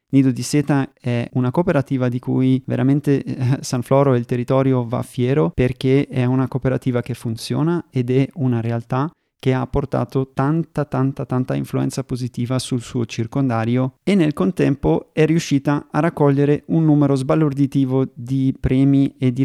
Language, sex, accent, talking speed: Italian, male, native, 155 wpm